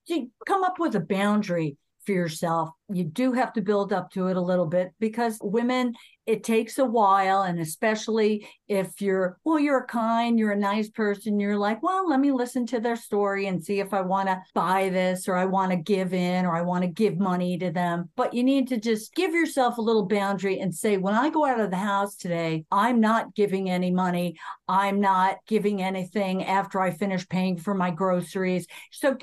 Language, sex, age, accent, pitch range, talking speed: English, female, 50-69, American, 185-245 Hz, 215 wpm